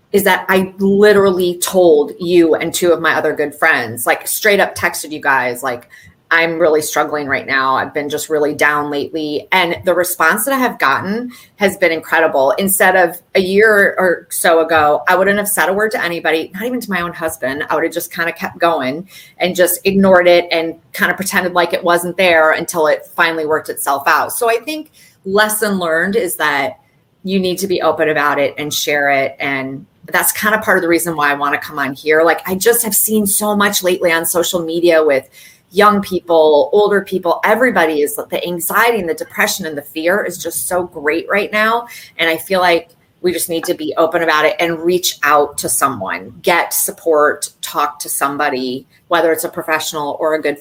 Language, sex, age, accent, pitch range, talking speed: English, female, 30-49, American, 155-190 Hz, 215 wpm